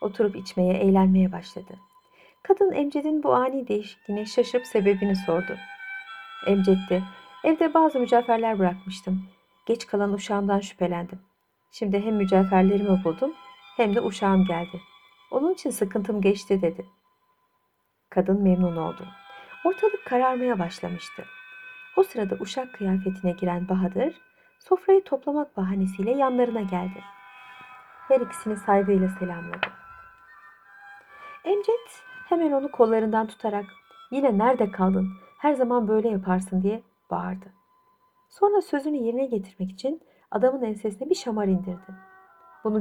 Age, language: 50-69, Turkish